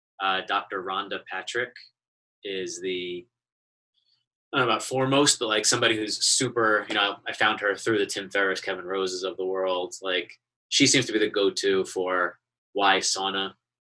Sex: male